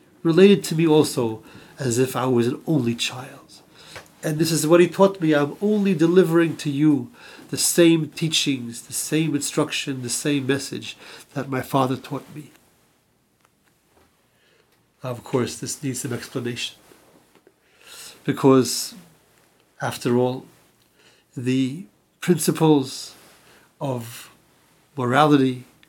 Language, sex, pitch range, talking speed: English, male, 130-160 Hz, 115 wpm